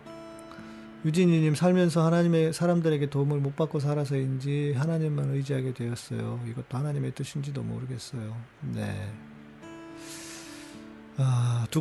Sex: male